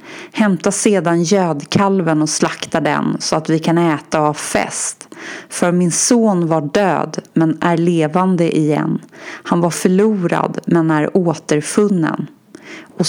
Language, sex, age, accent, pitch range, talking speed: Swedish, female, 30-49, native, 155-210 Hz, 135 wpm